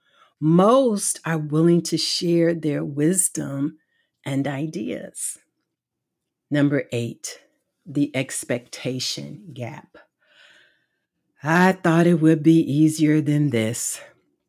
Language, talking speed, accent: English, 90 wpm, American